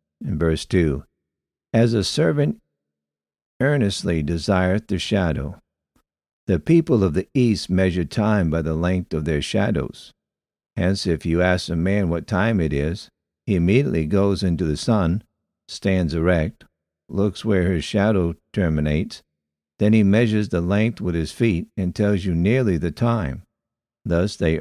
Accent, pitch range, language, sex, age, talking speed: American, 80-105 Hz, English, male, 60-79, 150 wpm